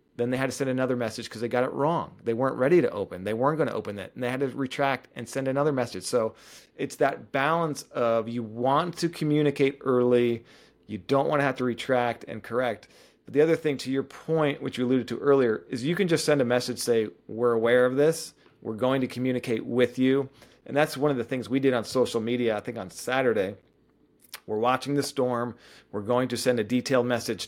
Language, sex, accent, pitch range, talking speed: English, male, American, 115-135 Hz, 235 wpm